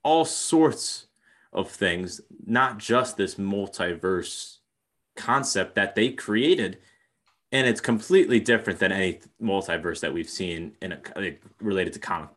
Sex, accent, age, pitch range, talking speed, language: male, American, 30-49, 90-115 Hz, 130 wpm, English